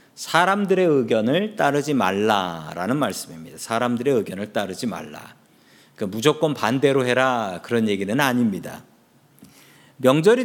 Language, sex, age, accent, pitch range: Korean, male, 40-59, native, 125-195 Hz